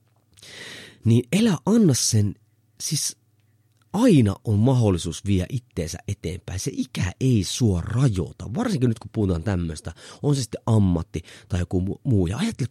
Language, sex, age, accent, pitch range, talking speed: Finnish, male, 30-49, native, 95-135 Hz, 140 wpm